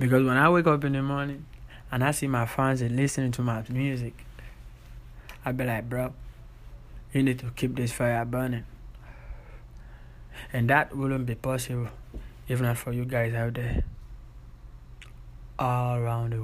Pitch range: 115-130 Hz